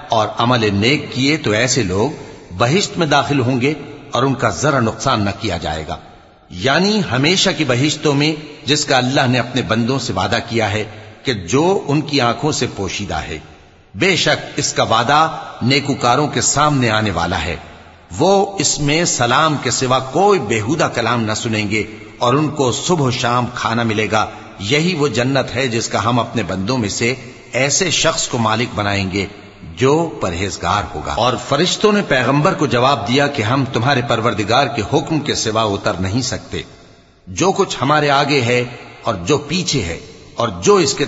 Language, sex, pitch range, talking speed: English, male, 110-150 Hz, 155 wpm